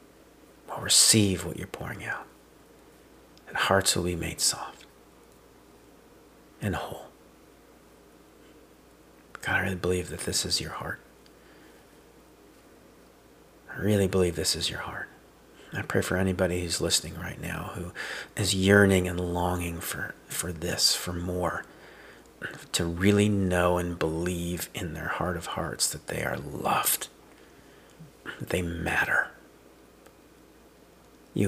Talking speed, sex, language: 125 wpm, male, English